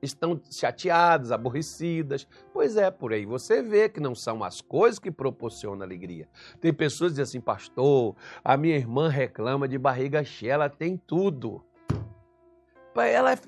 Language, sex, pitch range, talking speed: Portuguese, male, 155-230 Hz, 150 wpm